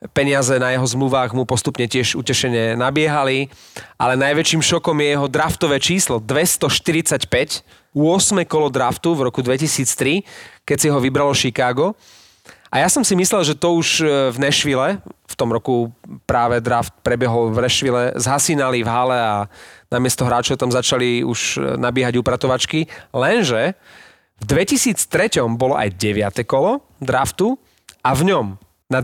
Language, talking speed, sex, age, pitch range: Slovak, 145 wpm, male, 30-49, 120-155 Hz